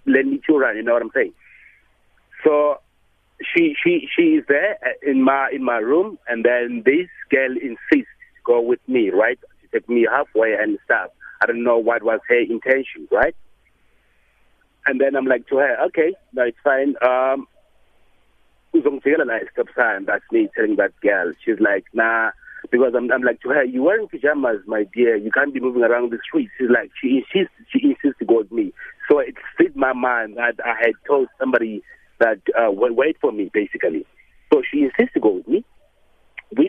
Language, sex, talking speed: English, male, 195 wpm